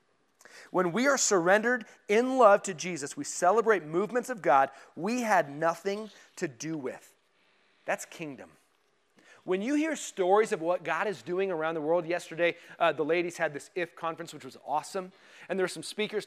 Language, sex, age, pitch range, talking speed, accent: English, male, 30-49, 160-230 Hz, 180 wpm, American